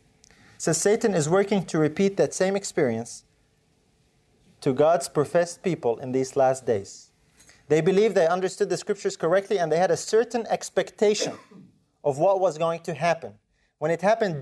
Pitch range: 135-200 Hz